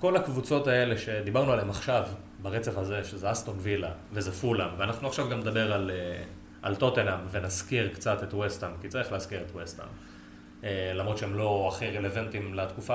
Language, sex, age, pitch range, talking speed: Hebrew, male, 30-49, 95-115 Hz, 165 wpm